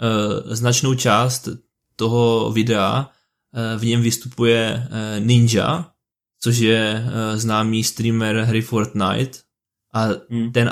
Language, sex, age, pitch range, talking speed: Czech, male, 20-39, 110-125 Hz, 90 wpm